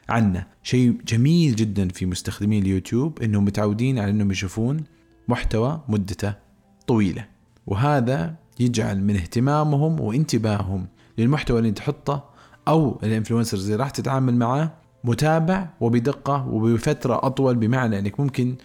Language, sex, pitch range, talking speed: Arabic, male, 105-140 Hz, 115 wpm